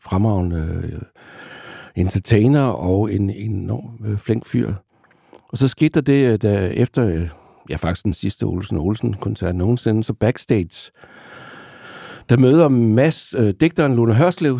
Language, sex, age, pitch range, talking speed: Danish, male, 60-79, 95-120 Hz, 135 wpm